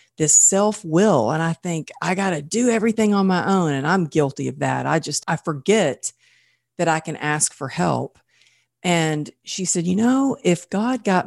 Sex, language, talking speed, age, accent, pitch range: female, English, 195 wpm, 40-59, American, 150-200 Hz